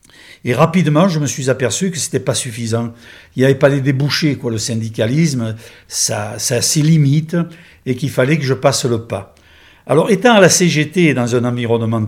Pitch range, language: 115-145 Hz, French